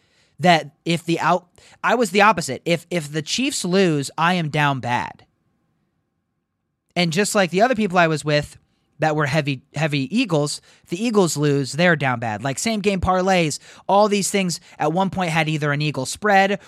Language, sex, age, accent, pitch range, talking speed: English, male, 30-49, American, 145-200 Hz, 185 wpm